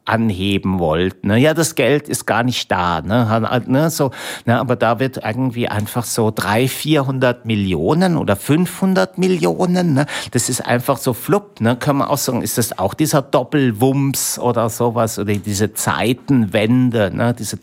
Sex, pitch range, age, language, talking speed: male, 105-130 Hz, 60-79, German, 165 wpm